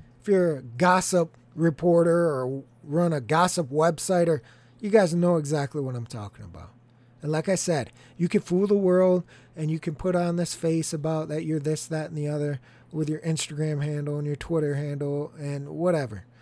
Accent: American